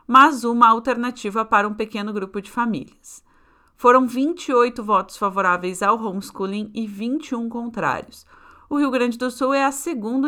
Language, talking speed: Portuguese, 150 wpm